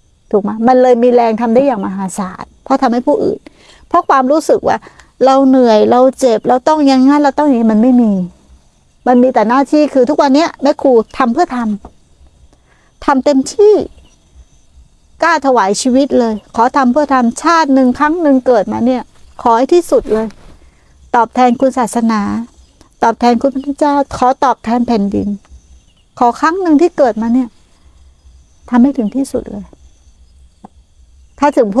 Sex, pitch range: female, 210-270 Hz